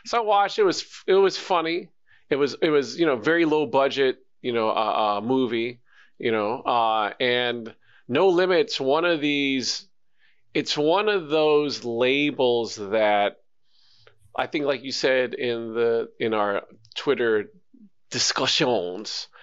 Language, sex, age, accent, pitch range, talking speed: English, male, 40-59, American, 125-165 Hz, 150 wpm